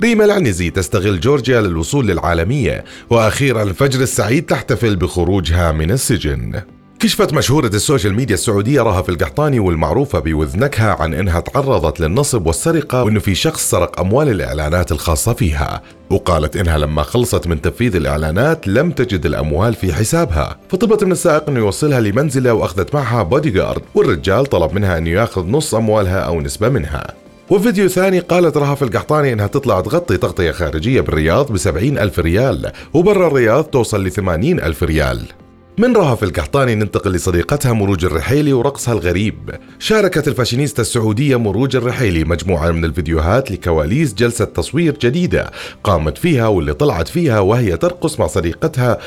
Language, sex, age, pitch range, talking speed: Arabic, male, 30-49, 90-140 Hz, 145 wpm